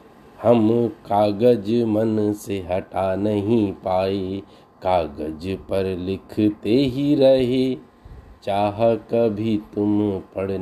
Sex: male